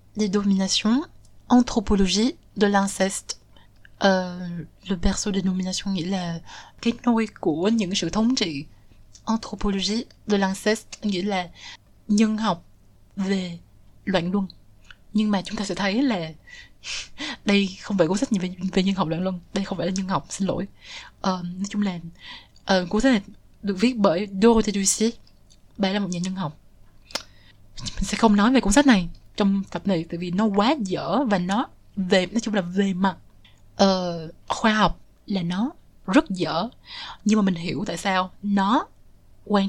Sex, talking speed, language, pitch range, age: female, 170 wpm, Vietnamese, 175-210 Hz, 20-39